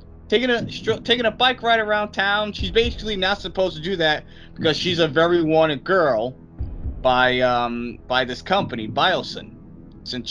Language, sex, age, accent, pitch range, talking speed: English, male, 20-39, American, 125-190 Hz, 165 wpm